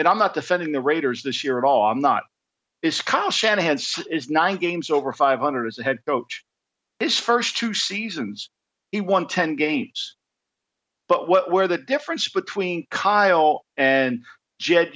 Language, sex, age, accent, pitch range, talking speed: English, male, 50-69, American, 140-185 Hz, 165 wpm